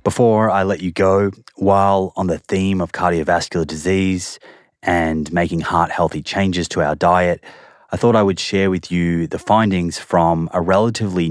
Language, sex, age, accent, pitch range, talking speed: English, male, 30-49, Australian, 85-100 Hz, 165 wpm